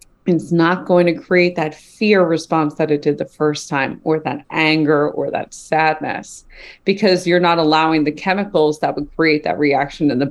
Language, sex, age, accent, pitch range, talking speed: English, female, 30-49, American, 155-195 Hz, 190 wpm